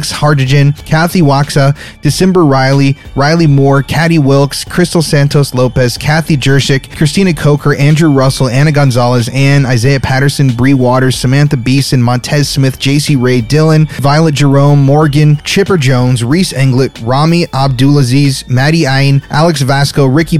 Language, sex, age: English, male, 30-49